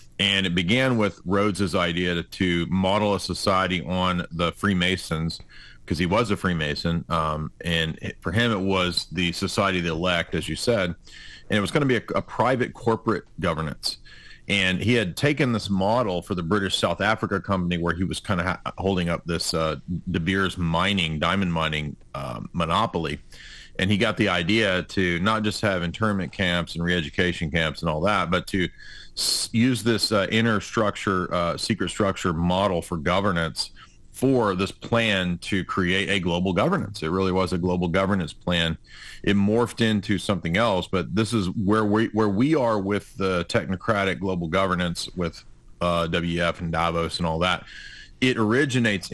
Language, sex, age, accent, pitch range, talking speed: English, male, 40-59, American, 85-100 Hz, 180 wpm